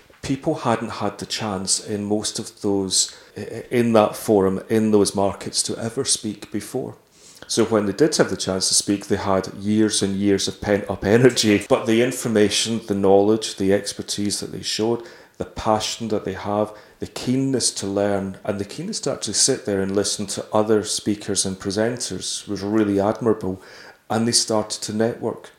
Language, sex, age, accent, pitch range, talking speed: English, male, 40-59, British, 100-110 Hz, 185 wpm